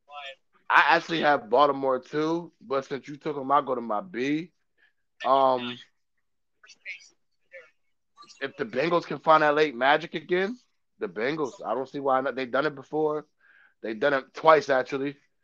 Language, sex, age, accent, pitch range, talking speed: English, male, 20-39, American, 130-180 Hz, 155 wpm